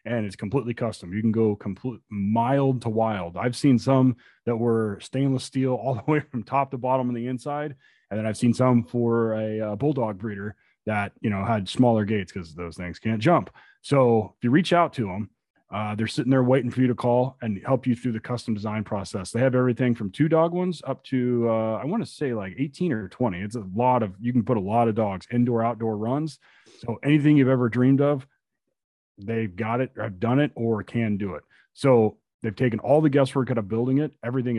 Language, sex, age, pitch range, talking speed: English, male, 30-49, 105-130 Hz, 230 wpm